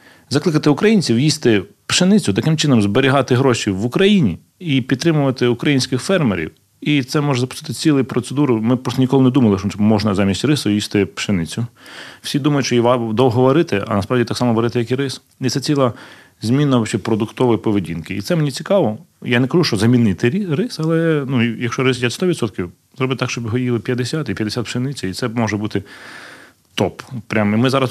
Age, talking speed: 30-49, 180 wpm